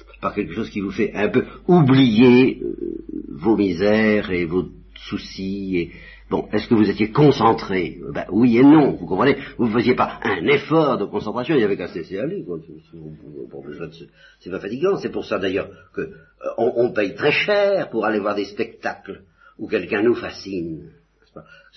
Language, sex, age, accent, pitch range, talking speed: French, male, 50-69, French, 85-135 Hz, 180 wpm